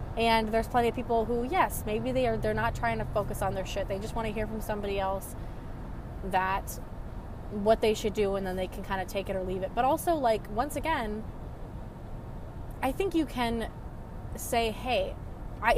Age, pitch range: 20-39, 200-260 Hz